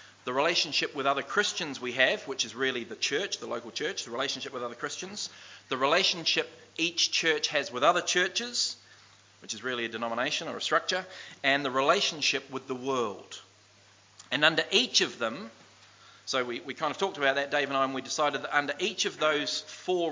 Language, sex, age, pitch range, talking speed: English, male, 40-59, 135-170 Hz, 200 wpm